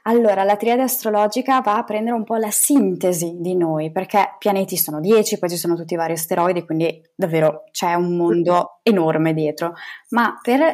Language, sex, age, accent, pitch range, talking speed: Italian, female, 20-39, native, 175-225 Hz, 185 wpm